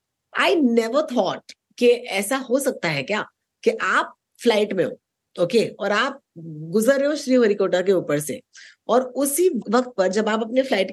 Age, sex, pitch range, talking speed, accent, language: 20-39, female, 185-280 Hz, 170 wpm, native, Hindi